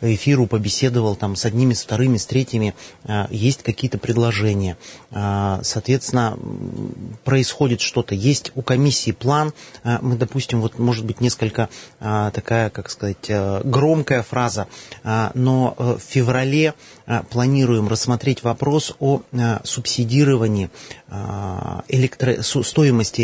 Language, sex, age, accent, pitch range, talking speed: Russian, male, 30-49, native, 110-130 Hz, 105 wpm